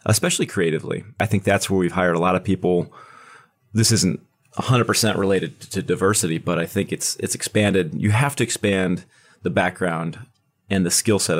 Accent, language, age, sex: American, English, 30-49, male